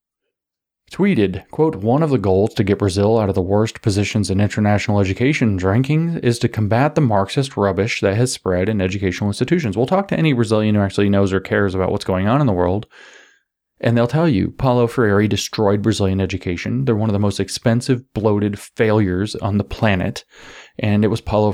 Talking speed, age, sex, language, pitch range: 200 wpm, 30-49, male, English, 100-120 Hz